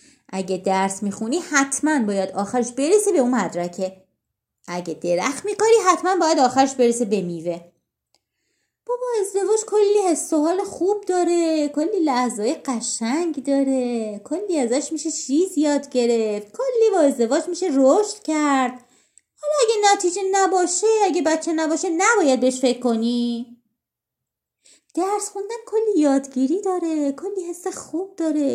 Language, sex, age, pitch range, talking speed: Persian, female, 30-49, 255-375 Hz, 130 wpm